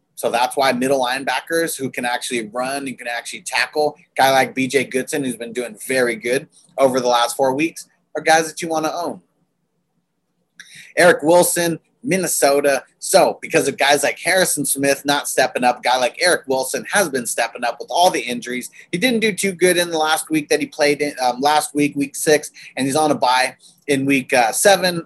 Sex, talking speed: male, 205 wpm